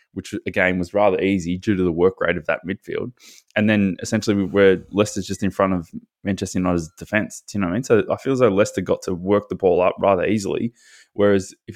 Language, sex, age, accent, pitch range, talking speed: English, male, 20-39, Australian, 90-105 Hz, 240 wpm